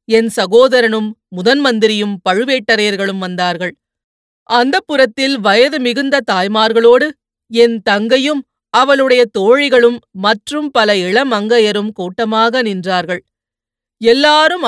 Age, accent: 30-49, native